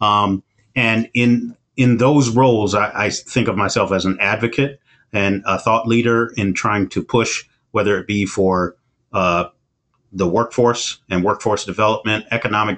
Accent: American